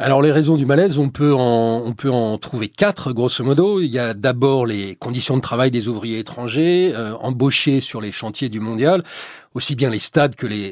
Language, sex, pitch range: French, male, 120-155 Hz